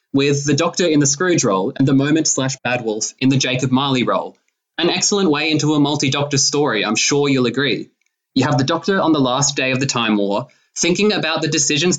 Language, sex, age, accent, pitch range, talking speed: English, male, 20-39, Australian, 130-160 Hz, 225 wpm